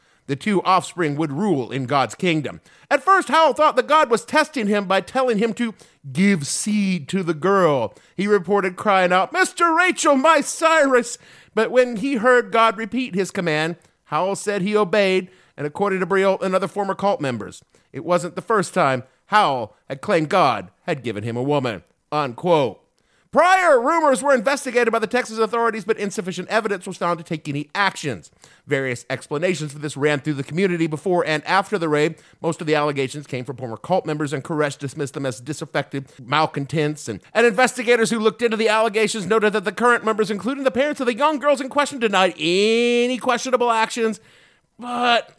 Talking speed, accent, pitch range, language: 190 wpm, American, 155-235 Hz, English